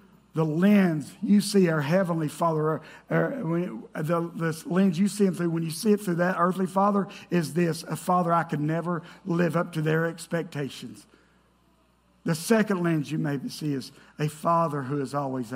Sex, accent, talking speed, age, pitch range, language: male, American, 185 wpm, 50-69, 130-170 Hz, English